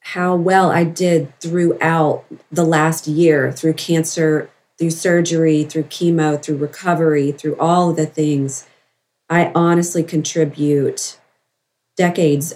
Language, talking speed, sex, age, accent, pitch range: English, 120 wpm, female, 40-59, American, 160-200 Hz